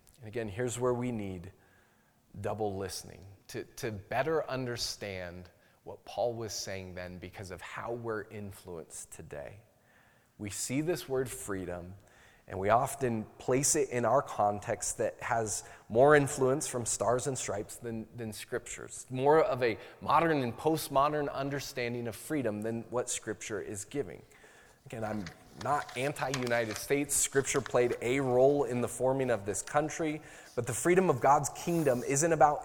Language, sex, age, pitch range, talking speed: English, male, 20-39, 105-135 Hz, 155 wpm